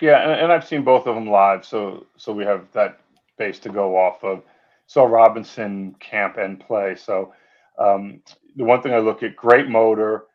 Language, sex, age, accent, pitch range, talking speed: English, male, 40-59, American, 100-115 Hz, 190 wpm